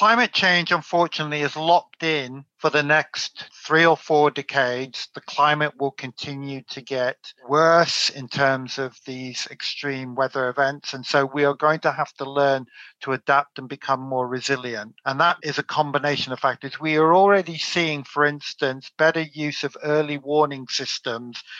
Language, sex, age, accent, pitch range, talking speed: English, male, 50-69, British, 135-155 Hz, 170 wpm